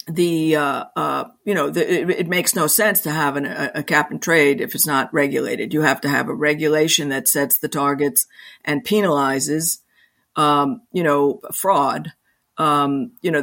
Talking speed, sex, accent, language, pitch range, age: 190 wpm, female, American, English, 140-170 Hz, 50-69